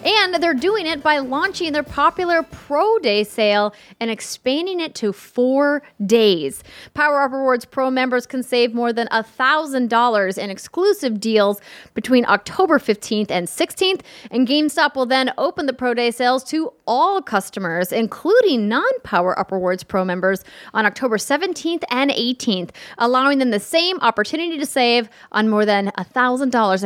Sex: female